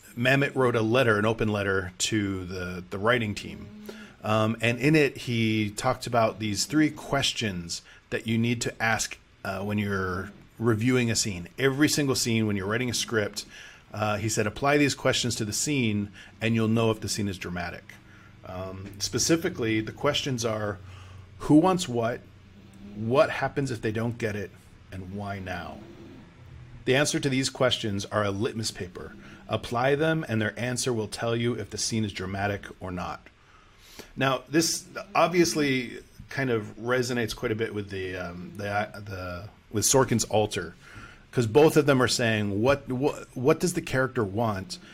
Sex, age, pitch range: male, 40-59, 100-130 Hz